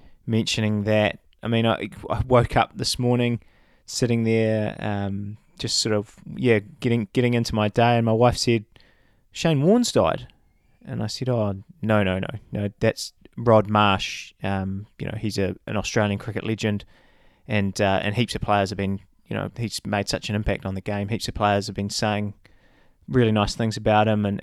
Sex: male